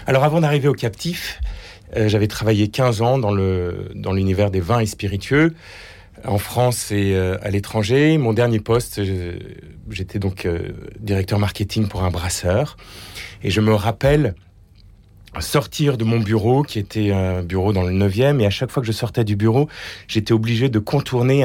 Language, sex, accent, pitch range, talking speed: French, male, French, 95-120 Hz, 180 wpm